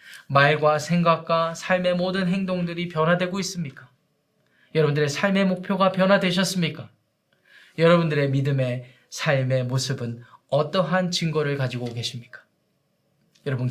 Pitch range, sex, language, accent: 135-185 Hz, male, Korean, native